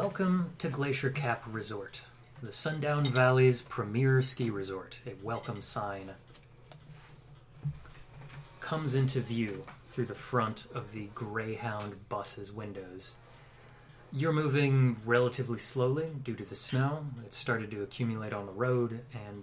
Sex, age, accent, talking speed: male, 30-49, American, 125 wpm